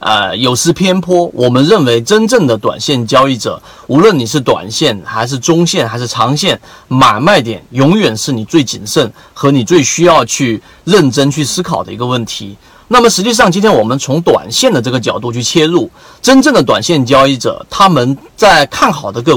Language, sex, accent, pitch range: Chinese, male, native, 120-170 Hz